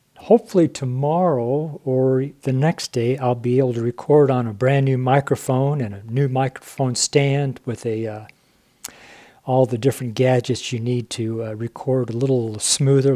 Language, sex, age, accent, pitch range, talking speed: English, male, 50-69, American, 120-150 Hz, 165 wpm